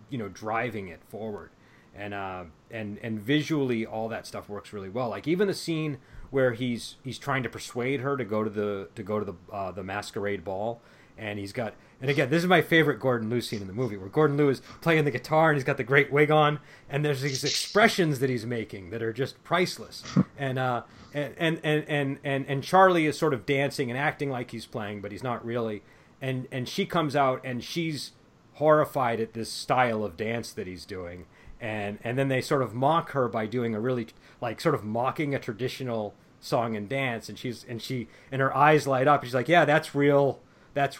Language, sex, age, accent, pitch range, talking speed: English, male, 30-49, American, 110-145 Hz, 220 wpm